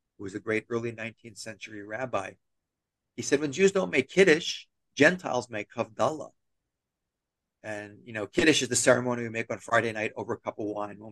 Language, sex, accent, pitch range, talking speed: English, male, American, 110-140 Hz, 195 wpm